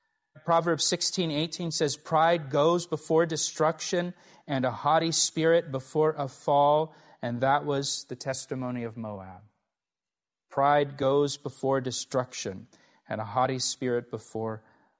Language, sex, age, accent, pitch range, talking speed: English, male, 30-49, American, 125-160 Hz, 125 wpm